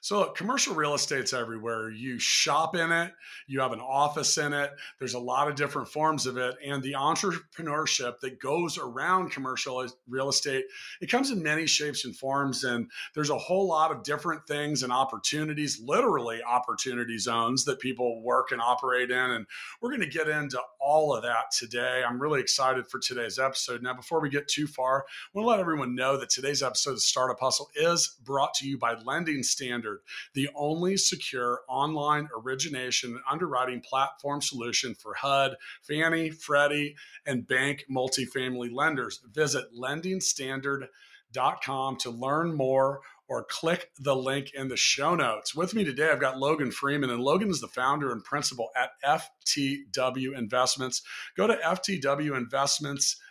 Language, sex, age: English, male, 40-59